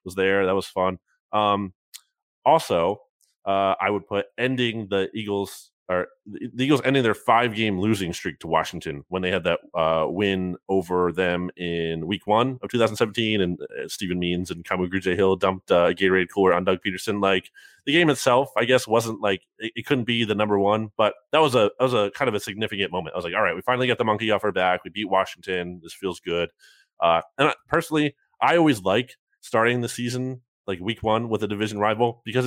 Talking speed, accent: 220 wpm, American